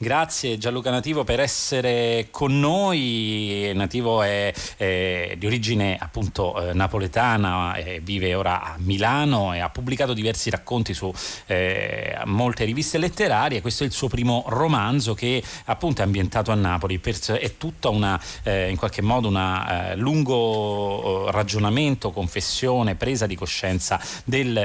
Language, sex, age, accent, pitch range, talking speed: Italian, male, 30-49, native, 95-120 Hz, 145 wpm